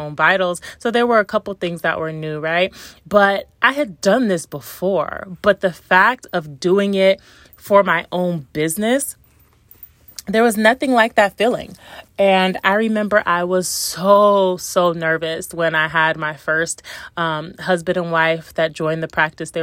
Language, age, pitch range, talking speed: English, 30-49, 165-200 Hz, 170 wpm